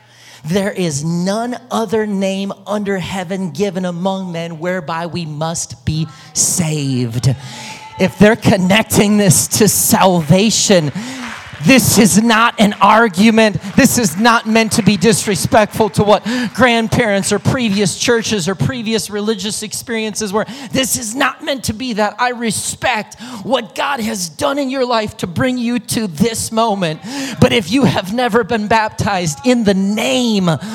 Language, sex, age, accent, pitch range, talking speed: English, male, 30-49, American, 195-270 Hz, 150 wpm